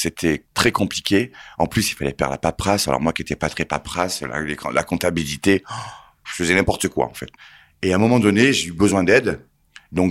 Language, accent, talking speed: French, French, 215 wpm